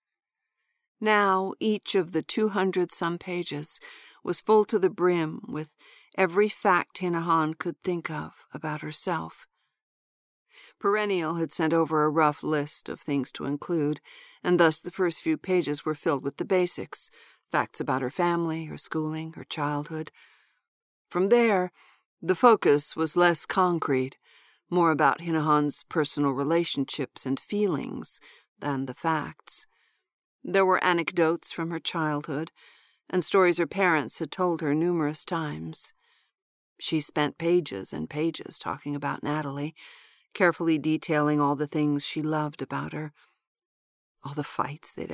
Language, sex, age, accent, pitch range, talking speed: English, female, 50-69, American, 150-185 Hz, 135 wpm